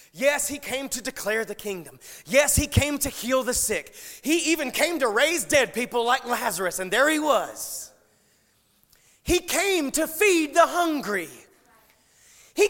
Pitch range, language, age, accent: 230-345 Hz, English, 30-49, American